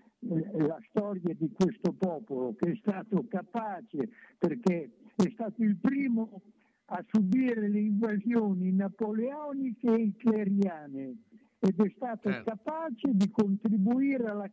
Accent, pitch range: native, 190-230 Hz